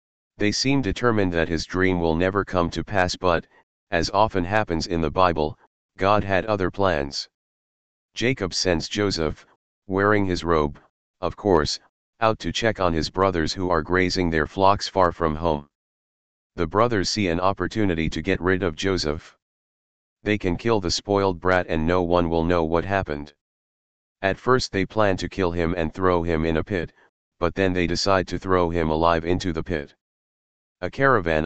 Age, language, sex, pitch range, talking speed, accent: 40-59, English, male, 80-95 Hz, 175 wpm, American